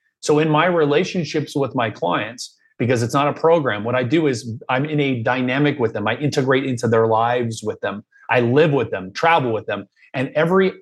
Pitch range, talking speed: 120-150 Hz, 210 wpm